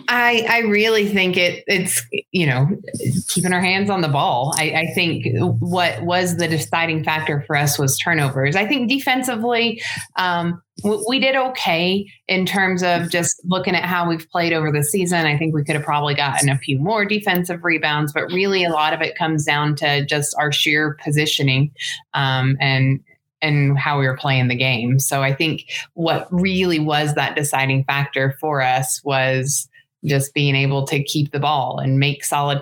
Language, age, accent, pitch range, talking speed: English, 30-49, American, 140-175 Hz, 185 wpm